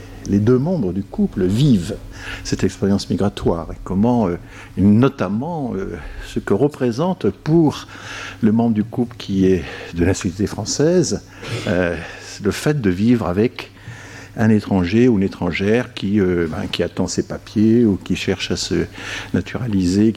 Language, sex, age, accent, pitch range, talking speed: French, male, 60-79, French, 95-120 Hz, 140 wpm